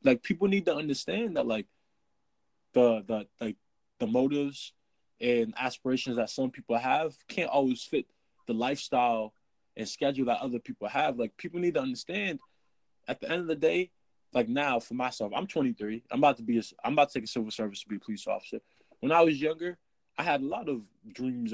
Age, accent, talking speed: 20-39, American, 205 wpm